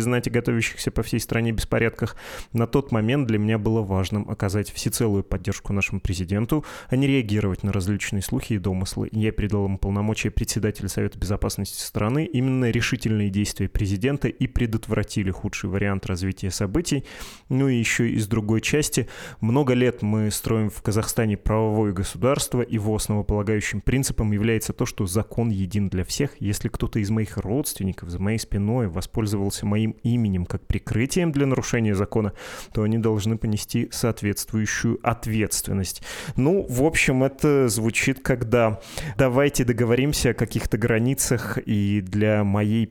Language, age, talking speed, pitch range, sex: Russian, 20-39, 145 wpm, 105-120 Hz, male